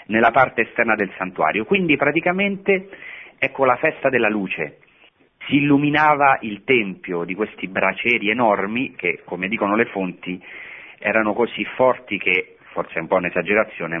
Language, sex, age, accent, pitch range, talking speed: Italian, male, 40-59, native, 95-120 Hz, 145 wpm